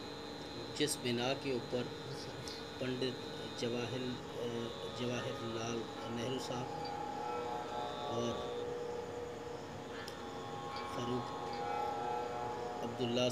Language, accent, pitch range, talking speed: Hindi, native, 90-130 Hz, 55 wpm